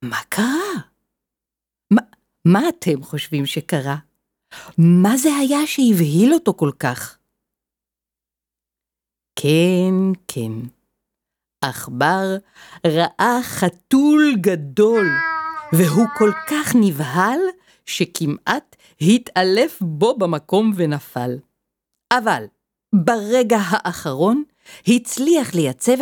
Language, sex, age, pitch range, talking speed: Hebrew, female, 50-69, 150-240 Hz, 80 wpm